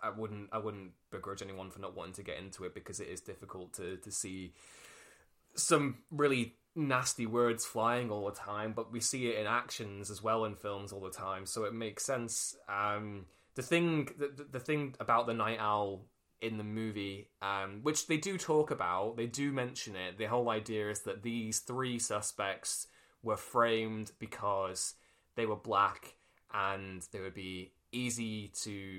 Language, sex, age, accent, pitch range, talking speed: English, male, 20-39, British, 100-120 Hz, 180 wpm